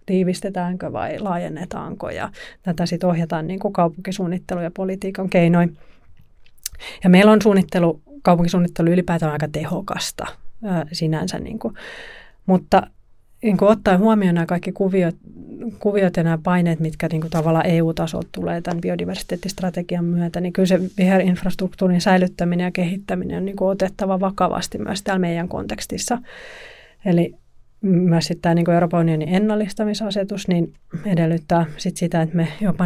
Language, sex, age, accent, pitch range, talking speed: Finnish, female, 30-49, native, 170-195 Hz, 130 wpm